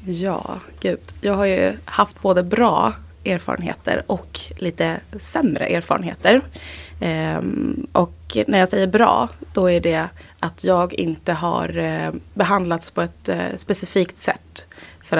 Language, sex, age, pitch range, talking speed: Swedish, female, 20-39, 155-195 Hz, 120 wpm